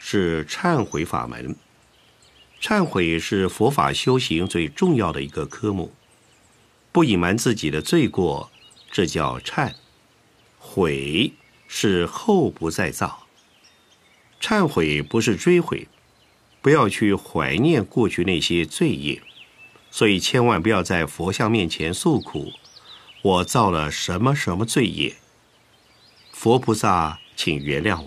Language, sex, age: Chinese, male, 50-69